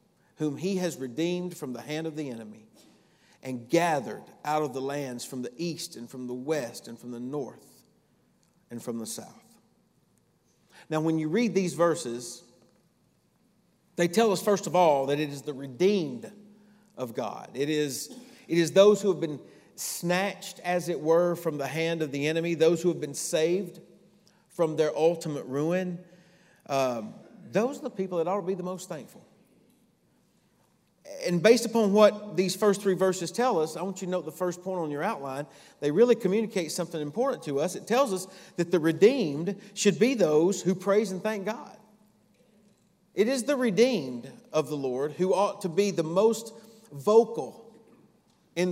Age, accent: 40-59, American